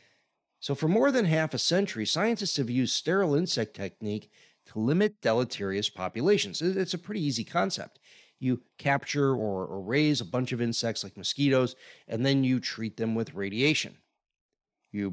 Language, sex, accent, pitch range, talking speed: English, male, American, 110-155 Hz, 160 wpm